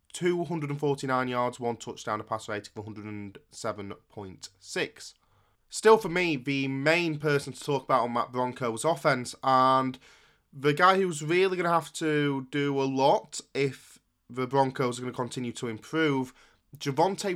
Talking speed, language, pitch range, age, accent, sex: 155 wpm, English, 115-150 Hz, 20-39, British, male